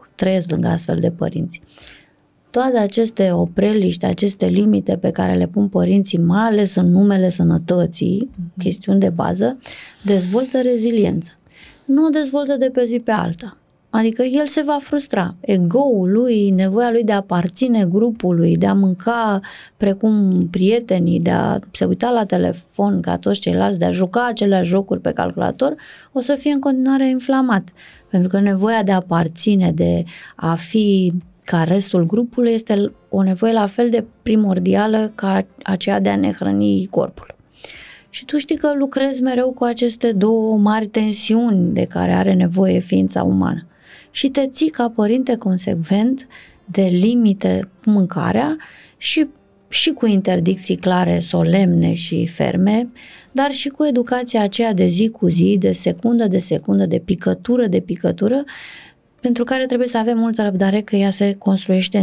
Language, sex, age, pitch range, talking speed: Romanian, female, 20-39, 180-235 Hz, 155 wpm